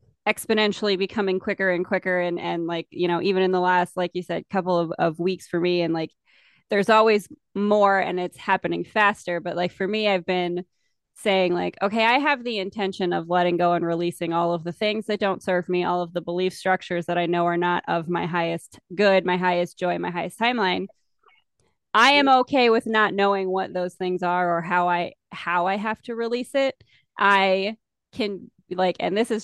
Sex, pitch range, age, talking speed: female, 175-205 Hz, 20-39, 210 wpm